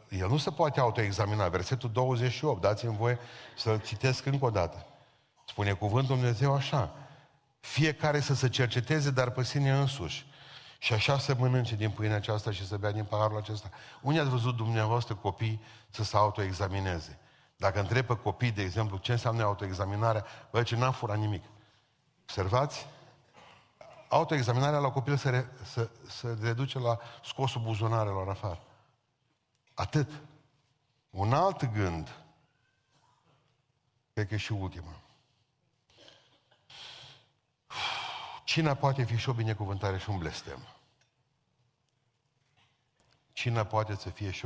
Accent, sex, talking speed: native, male, 130 wpm